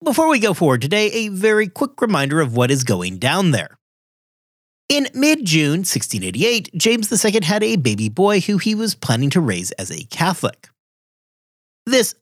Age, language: 40-59, English